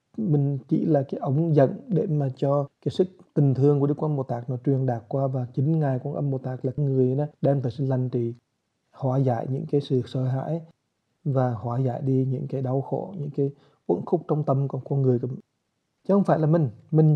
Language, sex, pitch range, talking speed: English, male, 125-150 Hz, 240 wpm